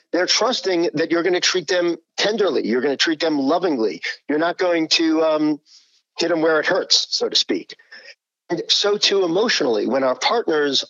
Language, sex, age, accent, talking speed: English, male, 50-69, American, 195 wpm